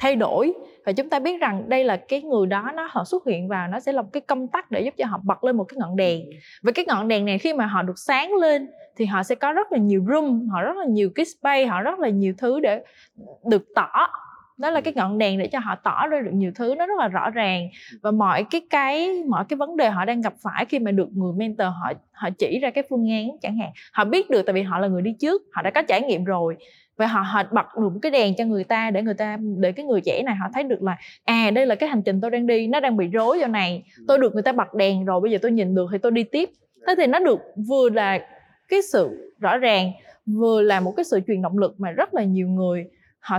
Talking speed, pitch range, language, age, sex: 285 wpm, 195-275 Hz, Vietnamese, 20-39, female